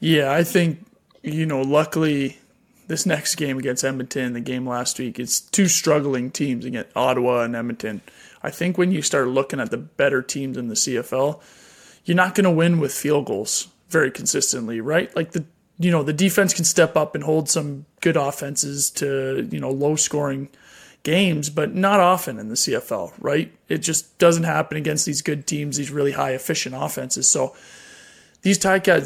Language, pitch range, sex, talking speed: English, 145-180 Hz, male, 185 wpm